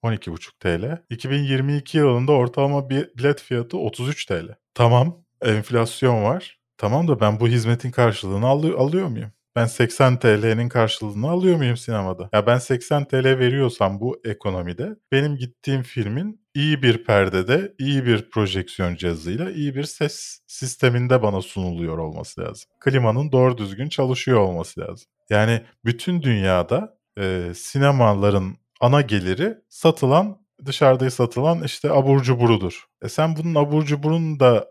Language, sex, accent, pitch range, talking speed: Turkish, male, native, 105-140 Hz, 135 wpm